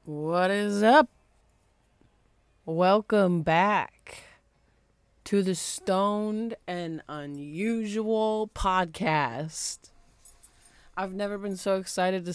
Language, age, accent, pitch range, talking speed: English, 20-39, American, 155-190 Hz, 85 wpm